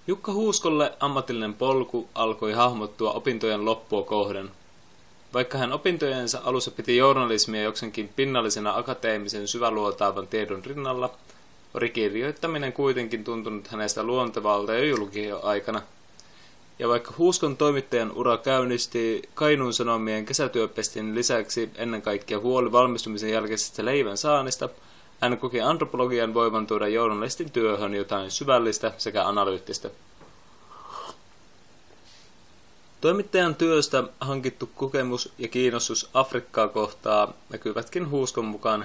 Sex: male